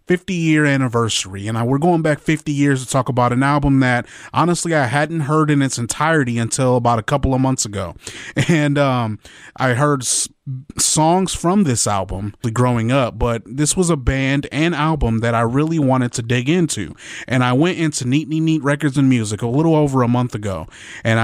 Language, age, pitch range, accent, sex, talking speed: English, 20-39, 115-145 Hz, American, male, 200 wpm